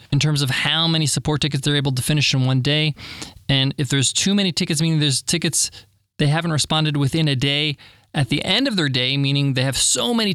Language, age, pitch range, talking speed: English, 20-39, 130-175 Hz, 230 wpm